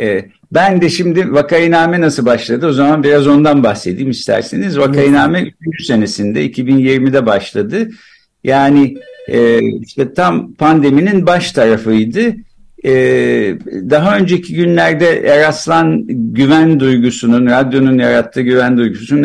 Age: 60-79